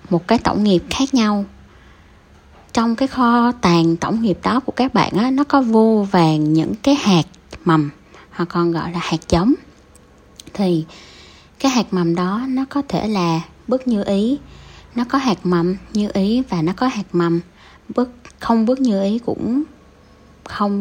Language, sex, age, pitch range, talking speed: Vietnamese, female, 20-39, 165-230 Hz, 175 wpm